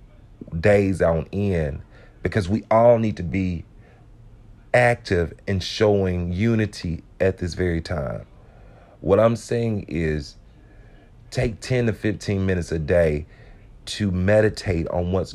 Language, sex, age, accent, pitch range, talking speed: English, male, 40-59, American, 90-115 Hz, 125 wpm